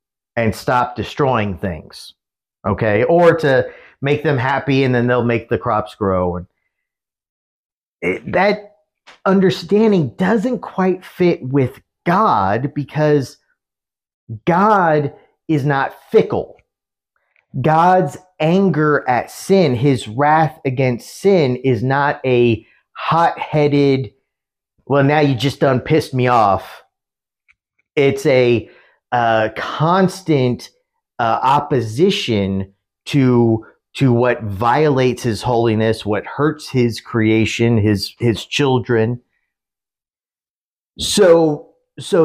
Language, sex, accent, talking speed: English, male, American, 105 wpm